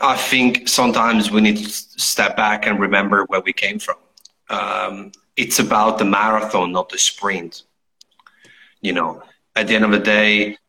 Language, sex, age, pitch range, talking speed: English, male, 30-49, 95-105 Hz, 170 wpm